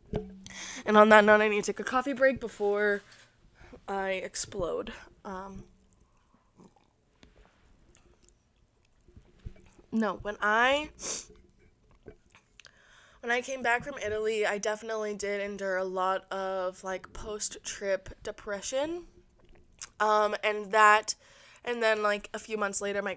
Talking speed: 115 wpm